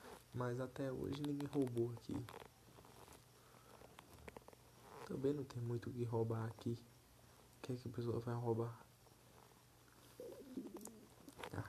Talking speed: 120 wpm